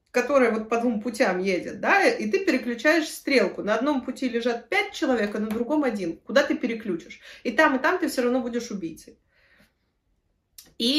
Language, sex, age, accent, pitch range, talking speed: Russian, female, 30-49, native, 210-275 Hz, 185 wpm